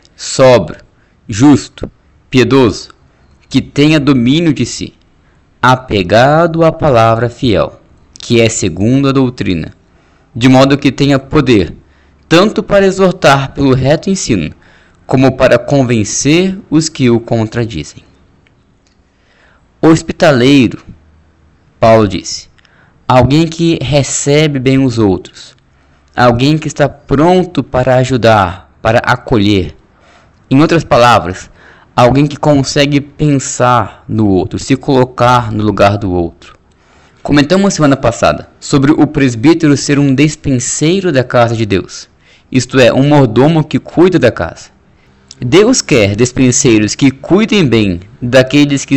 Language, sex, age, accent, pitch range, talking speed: Portuguese, male, 20-39, Brazilian, 105-150 Hz, 120 wpm